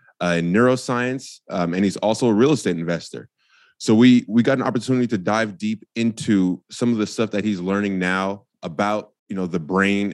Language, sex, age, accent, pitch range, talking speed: English, male, 20-39, American, 95-120 Hz, 200 wpm